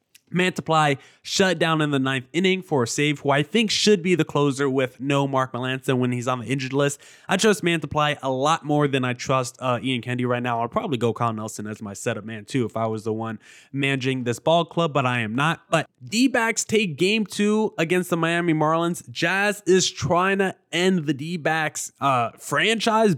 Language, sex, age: English, male, 20-39